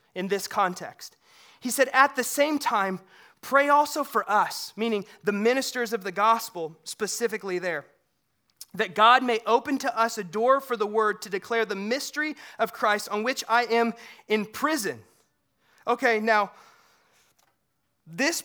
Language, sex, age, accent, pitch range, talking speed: English, male, 30-49, American, 200-235 Hz, 155 wpm